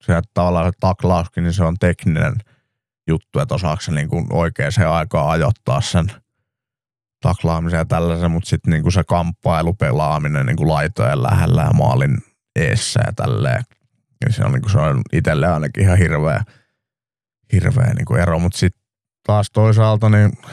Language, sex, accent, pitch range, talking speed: Finnish, male, native, 90-125 Hz, 150 wpm